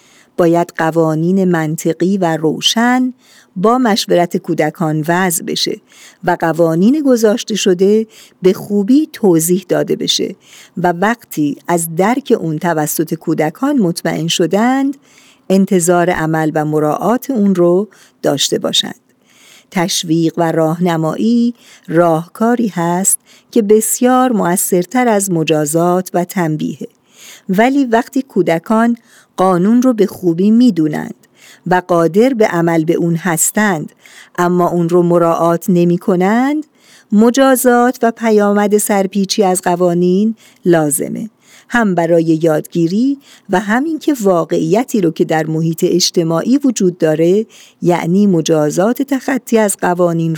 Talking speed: 115 wpm